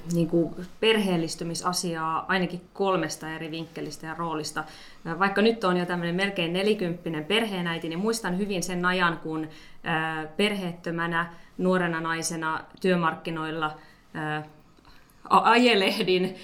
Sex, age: female, 20-39